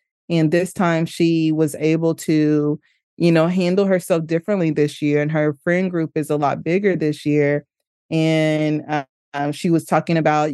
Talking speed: 170 wpm